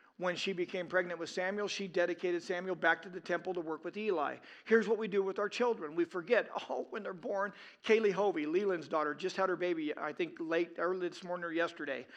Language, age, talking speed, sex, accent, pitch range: English, 40-59, 225 wpm, male, American, 175-210 Hz